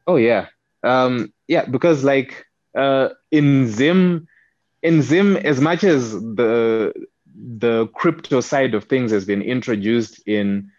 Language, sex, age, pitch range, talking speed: English, male, 20-39, 100-120 Hz, 135 wpm